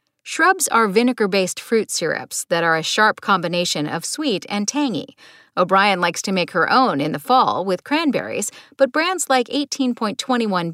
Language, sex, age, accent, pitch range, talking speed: English, female, 50-69, American, 190-280 Hz, 160 wpm